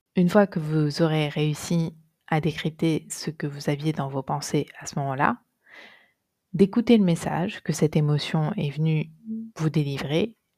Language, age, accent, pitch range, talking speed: French, 20-39, French, 150-185 Hz, 160 wpm